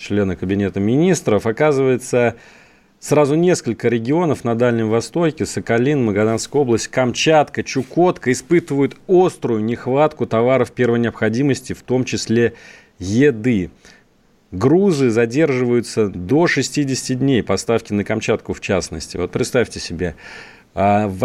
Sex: male